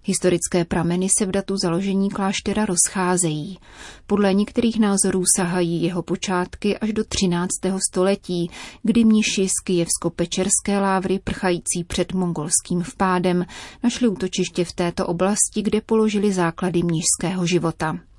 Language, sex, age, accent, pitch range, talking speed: Czech, female, 30-49, native, 175-200 Hz, 120 wpm